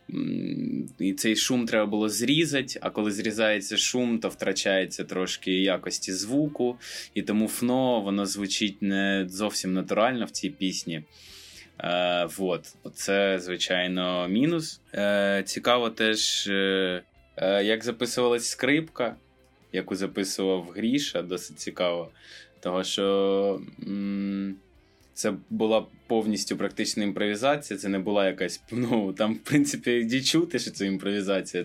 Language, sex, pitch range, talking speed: Ukrainian, male, 95-120 Hz, 120 wpm